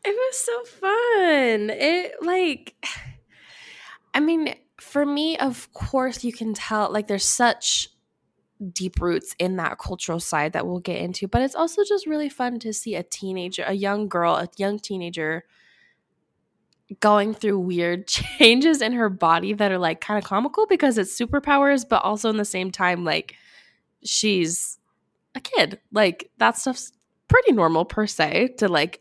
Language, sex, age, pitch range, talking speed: English, female, 10-29, 185-275 Hz, 165 wpm